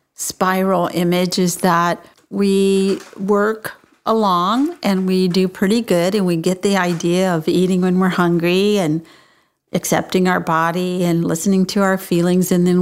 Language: English